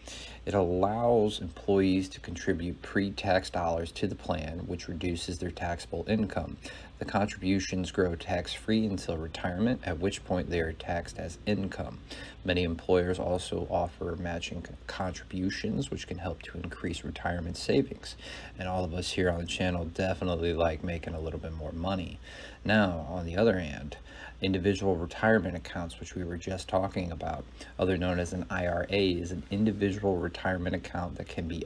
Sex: male